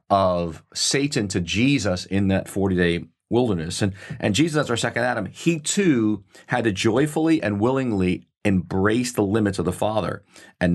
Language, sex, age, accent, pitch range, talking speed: English, male, 40-59, American, 90-115 Hz, 160 wpm